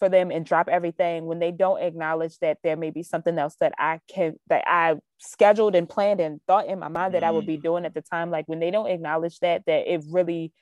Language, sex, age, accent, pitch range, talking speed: English, female, 20-39, American, 165-210 Hz, 255 wpm